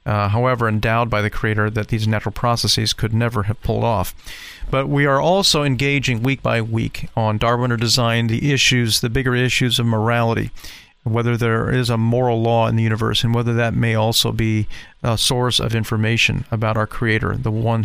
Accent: American